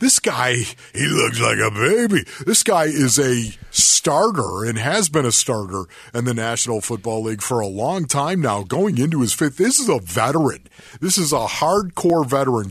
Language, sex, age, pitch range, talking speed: English, male, 50-69, 115-140 Hz, 190 wpm